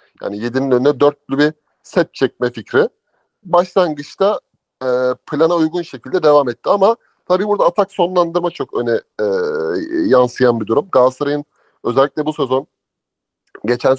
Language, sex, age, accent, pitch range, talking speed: Turkish, male, 30-49, native, 120-165 Hz, 135 wpm